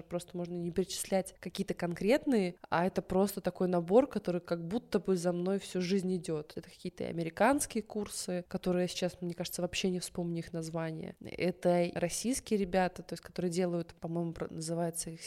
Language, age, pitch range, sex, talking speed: Russian, 20-39, 175-195 Hz, female, 170 wpm